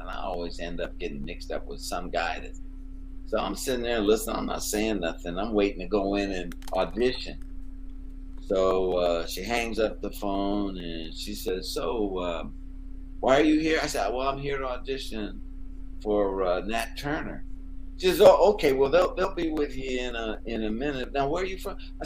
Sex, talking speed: male, 200 wpm